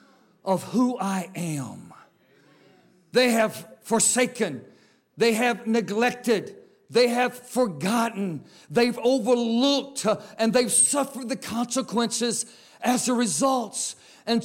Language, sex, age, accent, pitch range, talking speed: English, male, 50-69, American, 210-260 Hz, 100 wpm